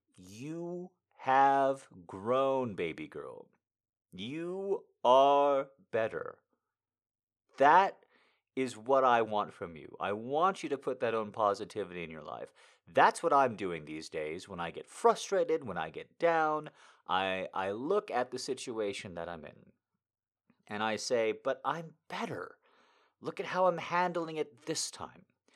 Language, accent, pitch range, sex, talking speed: English, American, 125-205 Hz, male, 150 wpm